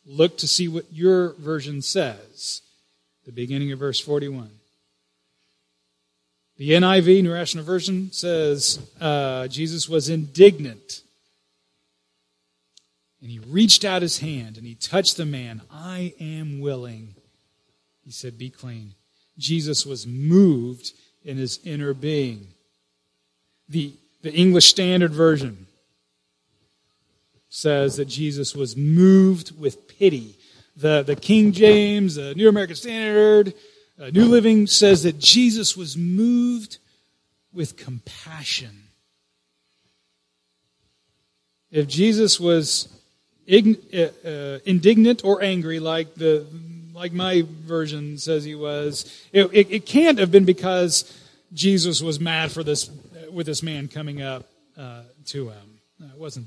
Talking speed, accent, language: 120 wpm, American, English